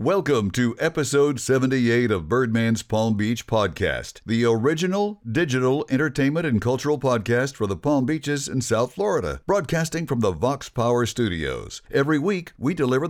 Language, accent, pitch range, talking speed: English, American, 110-150 Hz, 150 wpm